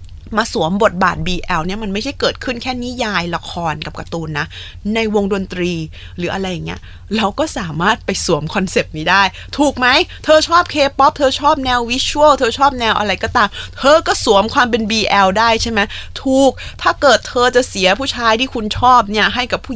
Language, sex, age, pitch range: Thai, female, 20-39, 180-250 Hz